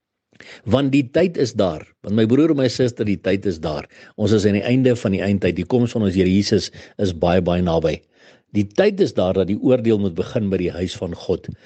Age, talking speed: 60-79, 240 wpm